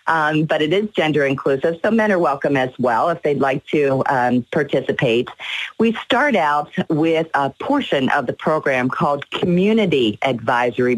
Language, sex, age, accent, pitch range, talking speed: English, female, 40-59, American, 135-185 Hz, 165 wpm